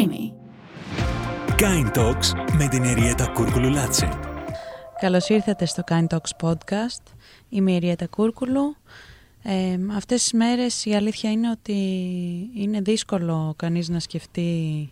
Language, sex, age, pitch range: Greek, female, 20-39, 155-195 Hz